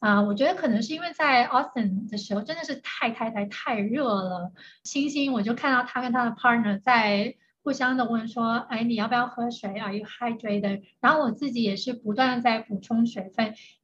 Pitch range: 210-265 Hz